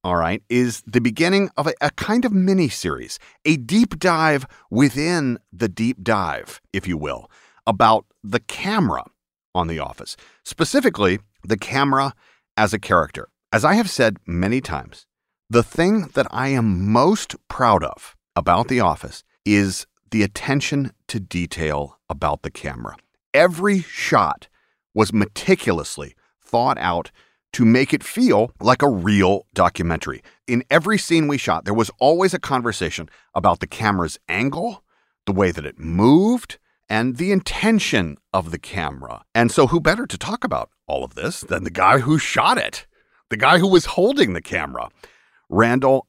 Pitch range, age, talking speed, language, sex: 95-155 Hz, 40-59, 160 wpm, English, male